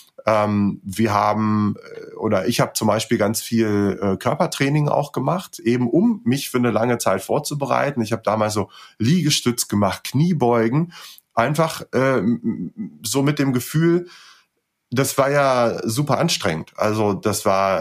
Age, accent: 30-49, German